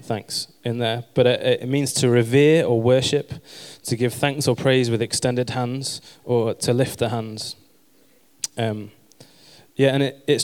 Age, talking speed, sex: 20-39, 160 wpm, male